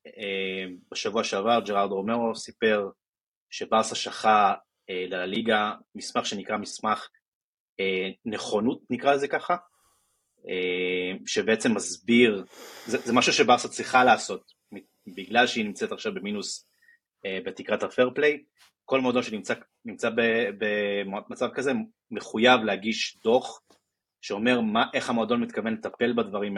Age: 30-49